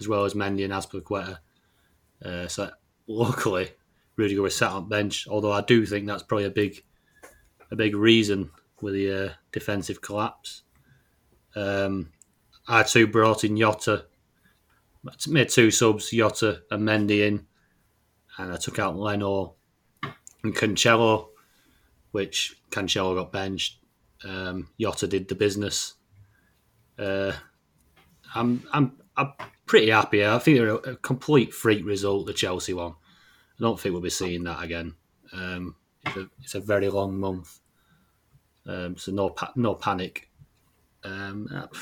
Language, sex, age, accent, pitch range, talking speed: English, male, 30-49, British, 95-110 Hz, 145 wpm